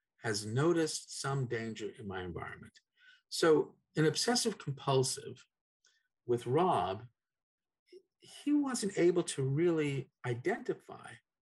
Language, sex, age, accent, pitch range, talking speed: English, male, 50-69, American, 120-175 Hz, 100 wpm